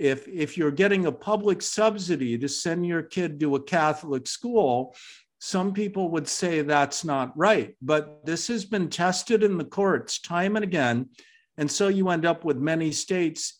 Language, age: English, 50-69